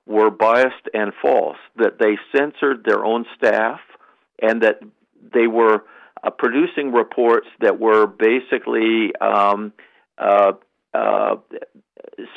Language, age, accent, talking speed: English, 60-79, American, 110 wpm